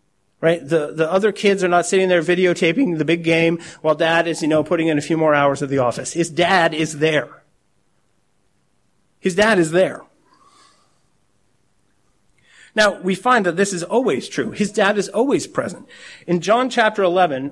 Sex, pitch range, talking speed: male, 170-210 Hz, 180 wpm